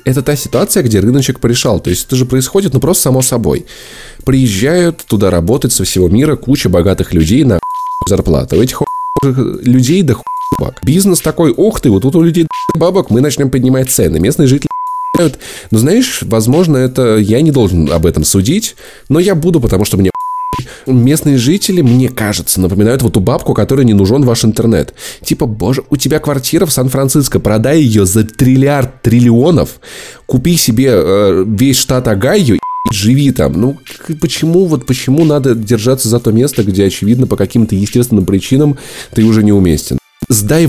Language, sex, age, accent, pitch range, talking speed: Russian, male, 20-39, native, 110-150 Hz, 170 wpm